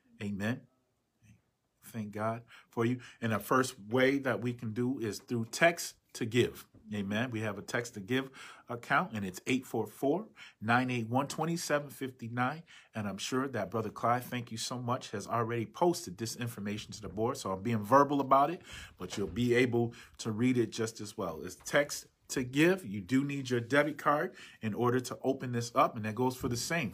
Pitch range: 110-130 Hz